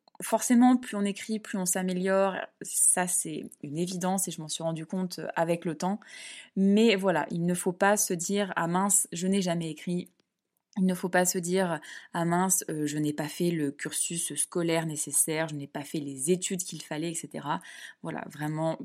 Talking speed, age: 205 wpm, 20-39